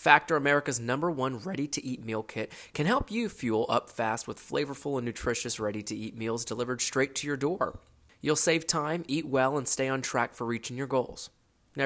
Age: 20-39